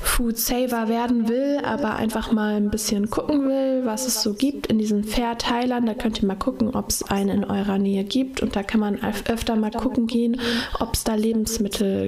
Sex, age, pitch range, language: female, 20-39, 205-230 Hz, German